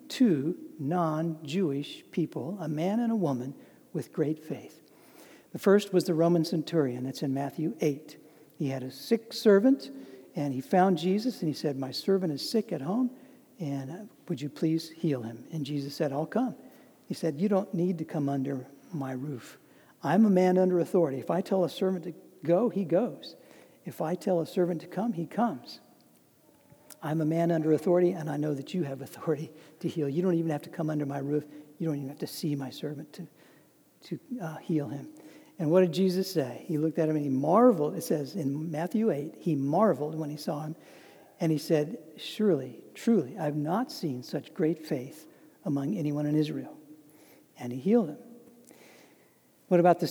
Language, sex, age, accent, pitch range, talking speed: English, male, 60-79, American, 145-185 Hz, 195 wpm